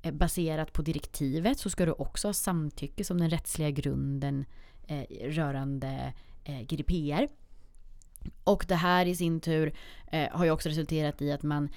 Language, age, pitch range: Swedish, 30-49, 140-175 Hz